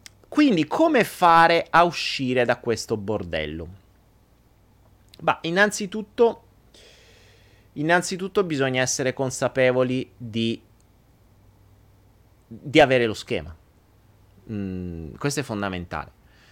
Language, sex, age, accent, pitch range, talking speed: Italian, male, 30-49, native, 105-150 Hz, 85 wpm